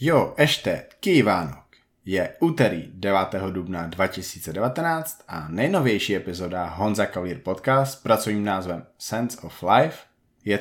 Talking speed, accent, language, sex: 120 wpm, native, Czech, male